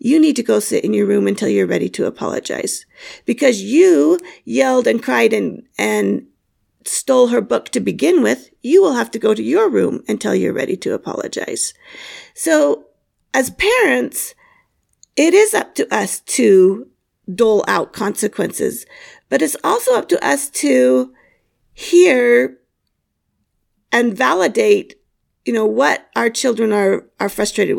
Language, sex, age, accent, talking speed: English, female, 40-59, American, 150 wpm